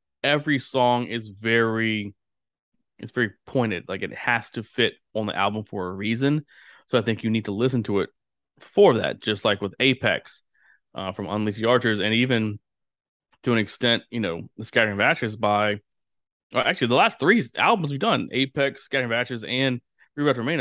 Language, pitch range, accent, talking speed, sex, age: English, 105-125 Hz, American, 180 wpm, male, 20-39